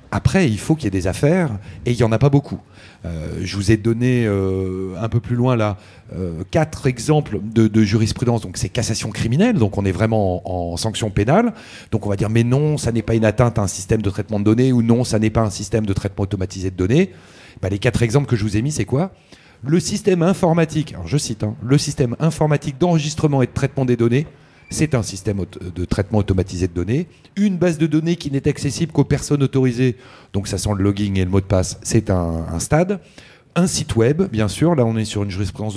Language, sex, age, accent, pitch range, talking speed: French, male, 40-59, French, 100-145 Hz, 240 wpm